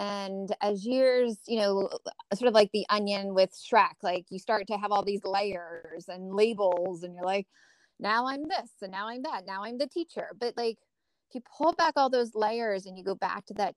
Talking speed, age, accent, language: 220 wpm, 20-39, American, English